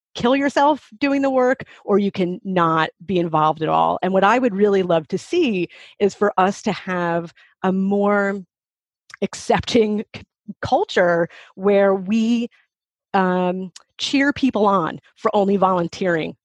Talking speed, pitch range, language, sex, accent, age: 145 wpm, 175-225 Hz, English, female, American, 30-49